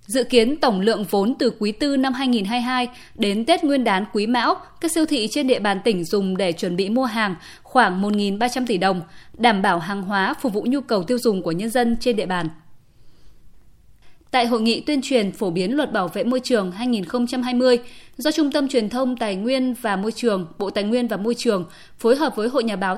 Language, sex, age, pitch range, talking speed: Vietnamese, female, 20-39, 200-265 Hz, 220 wpm